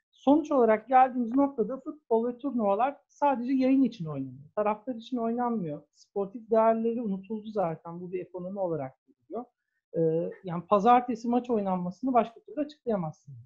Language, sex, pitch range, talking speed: Turkish, male, 195-265 Hz, 135 wpm